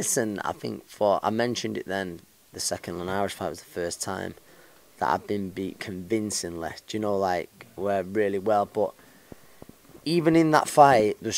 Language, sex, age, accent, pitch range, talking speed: English, male, 20-39, British, 100-120 Hz, 185 wpm